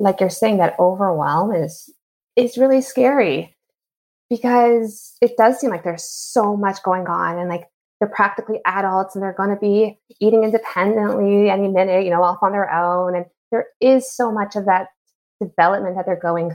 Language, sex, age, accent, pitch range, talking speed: English, female, 20-39, American, 175-240 Hz, 180 wpm